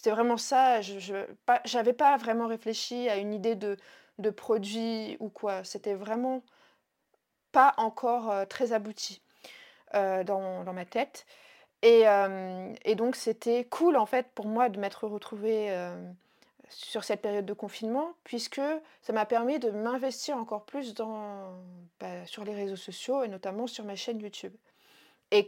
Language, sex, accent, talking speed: French, female, French, 160 wpm